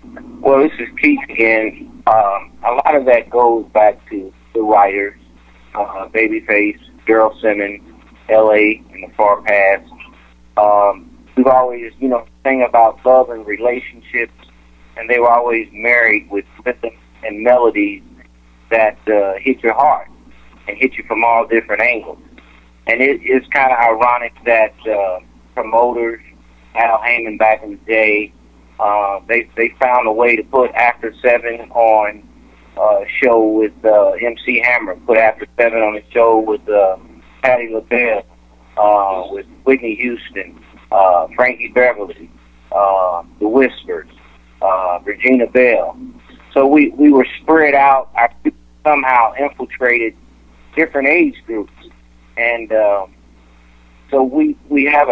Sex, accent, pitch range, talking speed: male, American, 95-125 Hz, 140 wpm